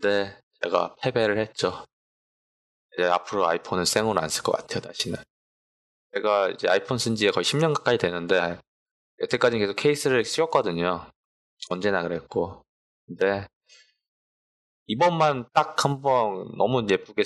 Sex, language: male, Korean